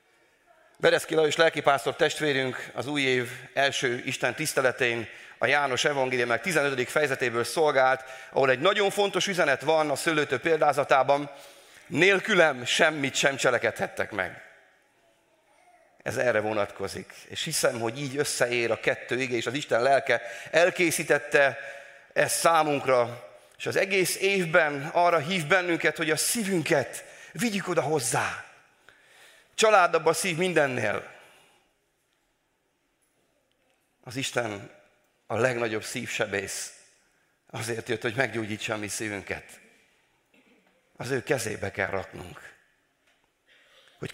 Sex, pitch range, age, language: male, 125-165 Hz, 30-49, Hungarian